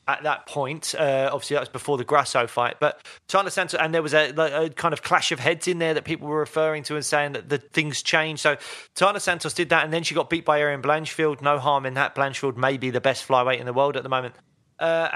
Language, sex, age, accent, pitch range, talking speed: English, male, 30-49, British, 135-160 Hz, 270 wpm